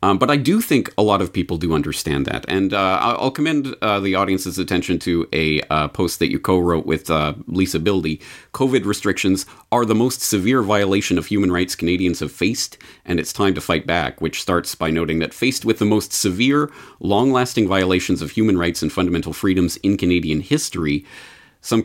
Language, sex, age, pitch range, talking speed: English, male, 40-59, 85-110 Hz, 200 wpm